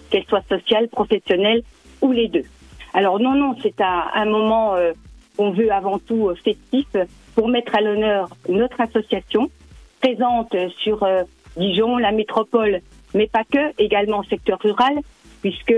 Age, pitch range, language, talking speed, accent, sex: 50-69, 195-235 Hz, French, 160 wpm, French, female